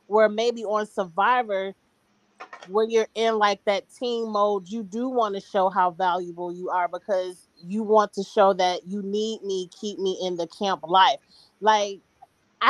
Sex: female